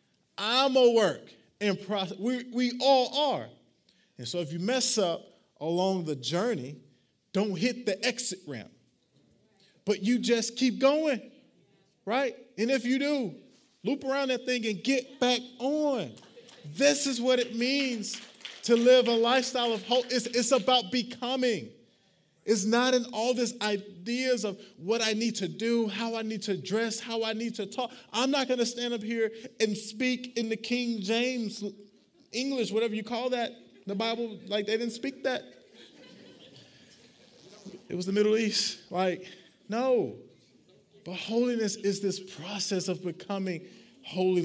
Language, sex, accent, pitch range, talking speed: English, male, American, 195-250 Hz, 160 wpm